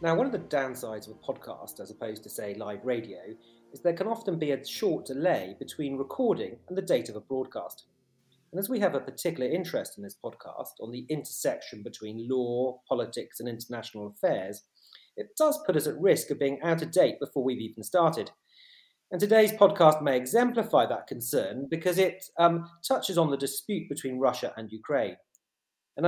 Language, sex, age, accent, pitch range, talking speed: English, male, 40-59, British, 120-175 Hz, 190 wpm